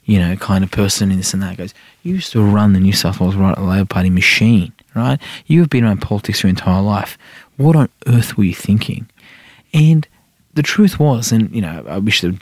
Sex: male